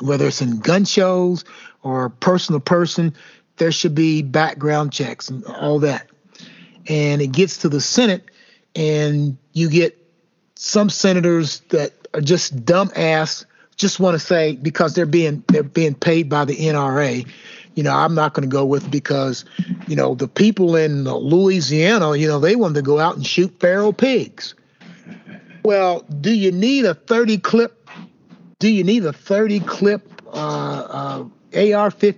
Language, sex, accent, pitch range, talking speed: English, male, American, 155-215 Hz, 155 wpm